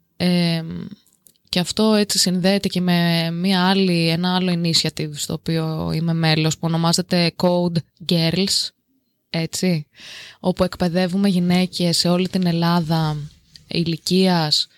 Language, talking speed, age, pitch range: Greek, 120 wpm, 20-39, 165-190 Hz